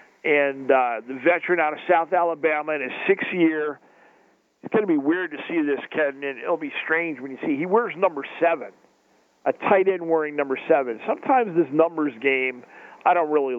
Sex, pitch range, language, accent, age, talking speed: male, 145-180 Hz, English, American, 50-69, 200 wpm